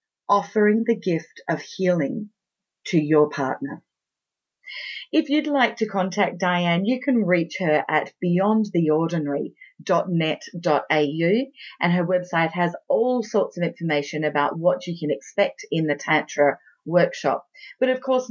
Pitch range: 170-225 Hz